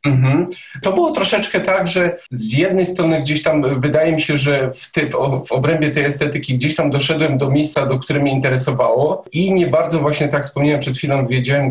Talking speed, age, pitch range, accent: 200 wpm, 40-59, 140-170 Hz, native